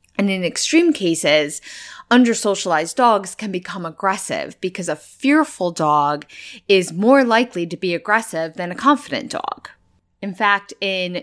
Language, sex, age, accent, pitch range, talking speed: English, female, 20-39, American, 180-260 Hz, 140 wpm